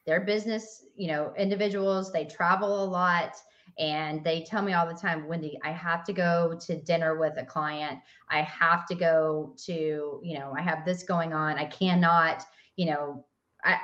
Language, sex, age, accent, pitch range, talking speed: English, female, 30-49, American, 160-190 Hz, 185 wpm